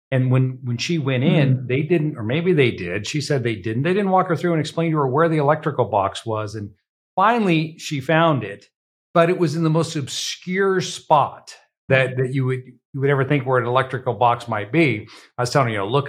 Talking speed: 240 wpm